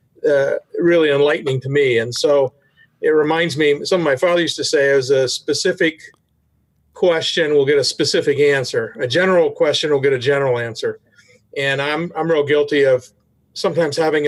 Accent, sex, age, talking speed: American, male, 50-69, 175 wpm